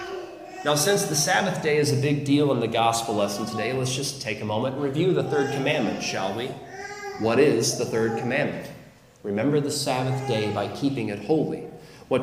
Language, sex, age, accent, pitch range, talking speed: English, male, 40-59, American, 130-170 Hz, 195 wpm